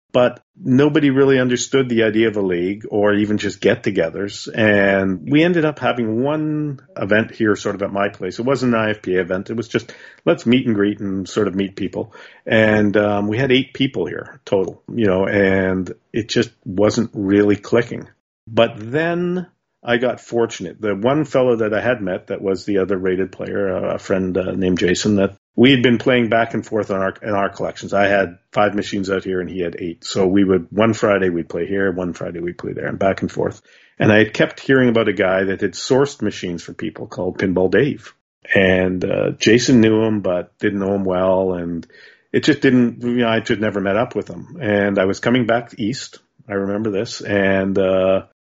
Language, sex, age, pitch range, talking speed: English, male, 50-69, 95-120 Hz, 215 wpm